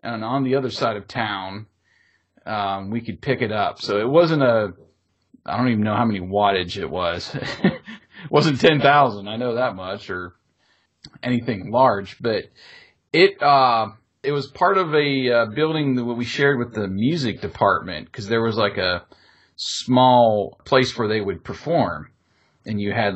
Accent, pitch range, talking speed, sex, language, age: American, 100-135 Hz, 175 wpm, male, English, 40-59